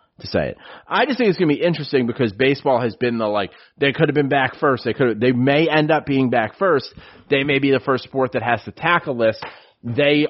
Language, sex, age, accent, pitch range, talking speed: English, male, 30-49, American, 115-145 Hz, 260 wpm